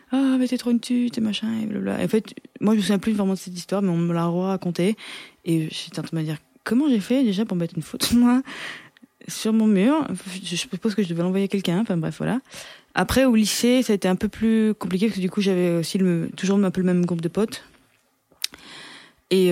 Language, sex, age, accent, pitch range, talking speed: French, female, 20-39, French, 170-215 Hz, 260 wpm